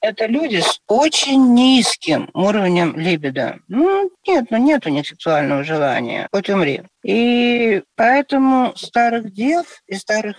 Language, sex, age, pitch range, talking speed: Russian, female, 50-69, 170-255 Hz, 135 wpm